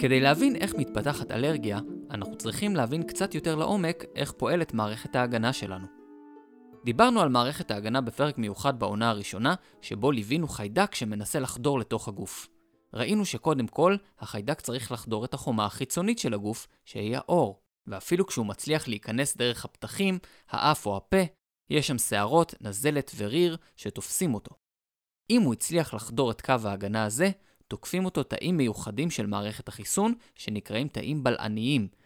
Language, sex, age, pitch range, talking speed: Hebrew, male, 20-39, 110-170 Hz, 145 wpm